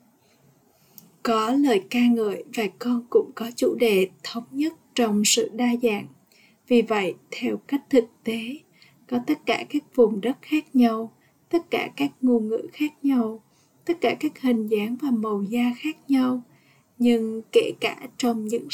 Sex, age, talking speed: female, 20-39, 165 wpm